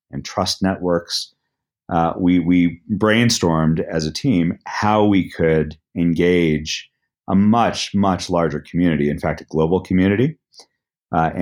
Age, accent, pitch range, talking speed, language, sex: 40-59, American, 80-95 Hz, 130 wpm, English, male